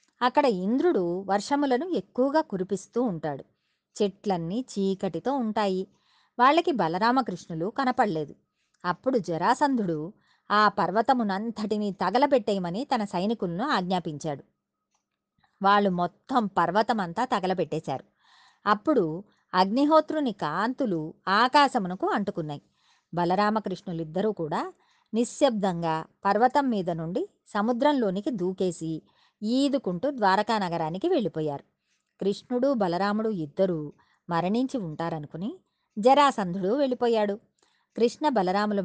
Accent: native